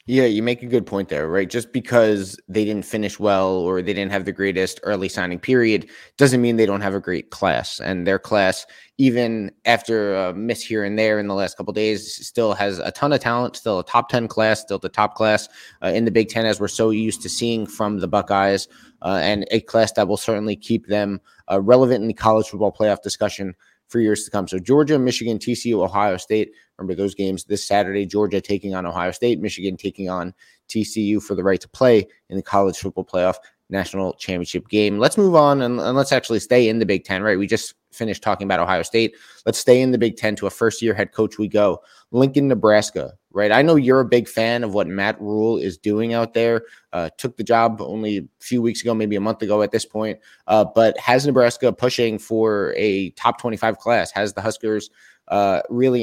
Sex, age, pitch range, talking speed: male, 20-39, 100-115 Hz, 225 wpm